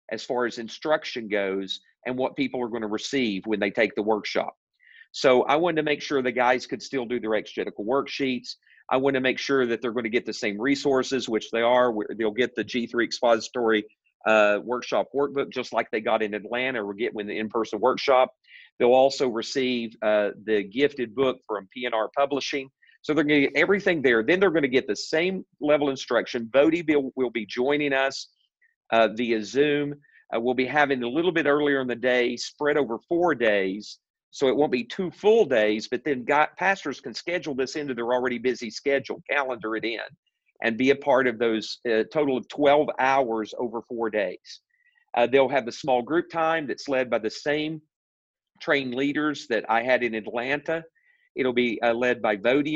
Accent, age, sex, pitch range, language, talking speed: American, 40-59, male, 115-145 Hz, English, 200 wpm